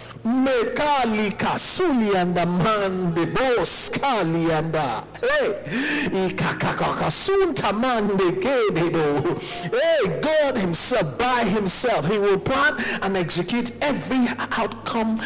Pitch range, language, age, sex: 175-245 Hz, English, 50-69, male